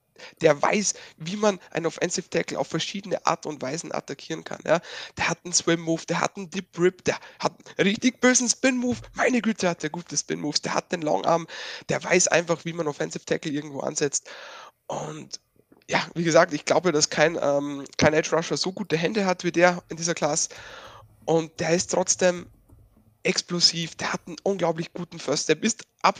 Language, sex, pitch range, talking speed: German, male, 150-180 Hz, 200 wpm